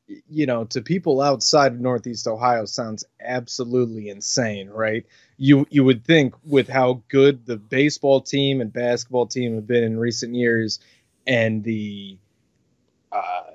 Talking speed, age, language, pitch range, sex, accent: 145 wpm, 20-39, English, 110-135 Hz, male, American